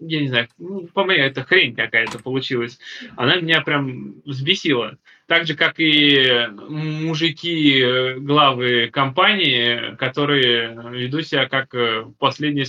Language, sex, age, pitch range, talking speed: Russian, male, 20-39, 130-160 Hz, 110 wpm